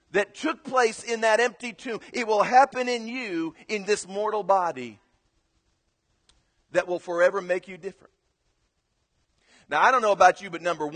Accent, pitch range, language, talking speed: American, 170-230 Hz, English, 165 wpm